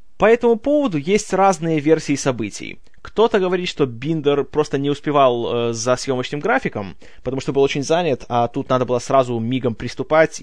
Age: 20-39